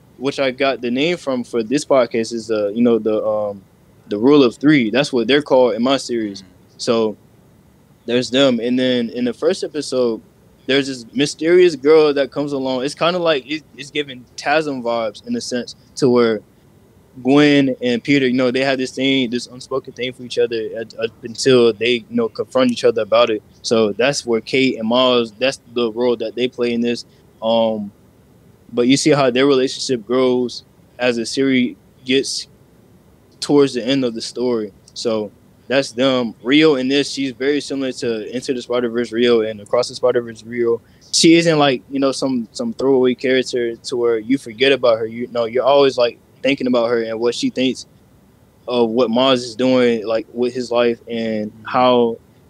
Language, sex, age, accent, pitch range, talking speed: English, male, 20-39, American, 115-135 Hz, 195 wpm